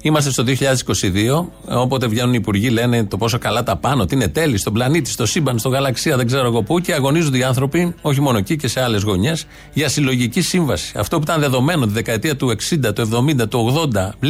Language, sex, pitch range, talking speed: Greek, male, 110-155 Hz, 215 wpm